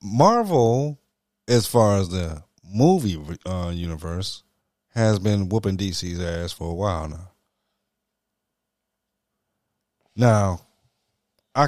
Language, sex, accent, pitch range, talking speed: English, male, American, 90-120 Hz, 100 wpm